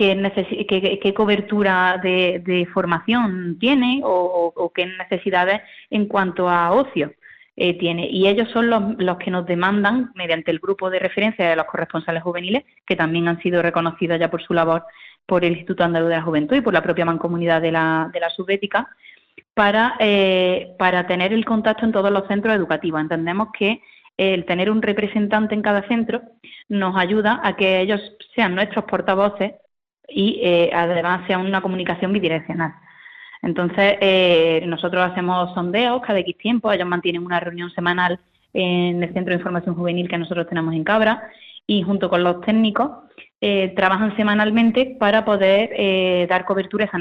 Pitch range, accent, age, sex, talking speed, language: 170-210 Hz, Spanish, 20-39, female, 170 wpm, Spanish